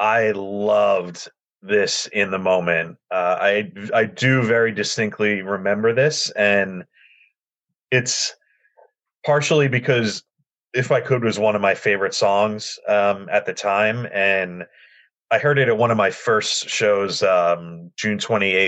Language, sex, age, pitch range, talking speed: English, male, 30-49, 95-125 Hz, 140 wpm